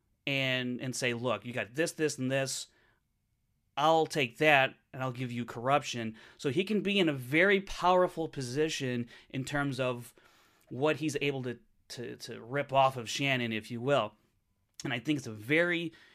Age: 30-49